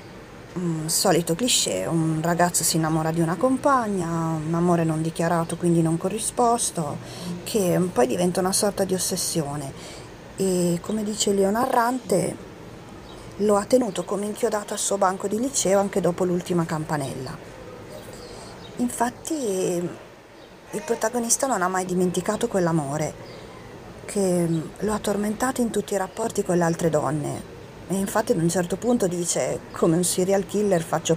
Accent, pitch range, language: native, 165-205 Hz, Italian